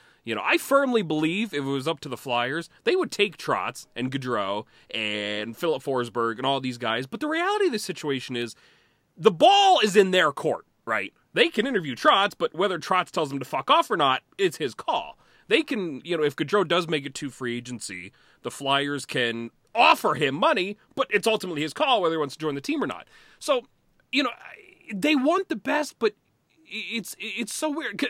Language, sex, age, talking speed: English, male, 30-49, 215 wpm